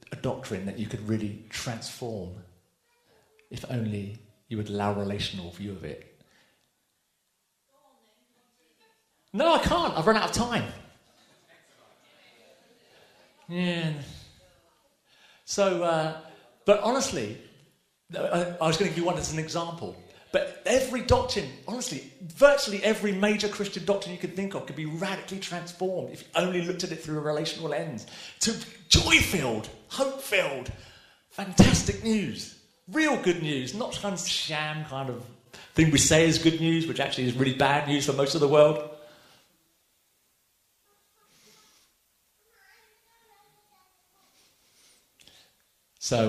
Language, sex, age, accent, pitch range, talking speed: English, male, 40-59, British, 130-205 Hz, 130 wpm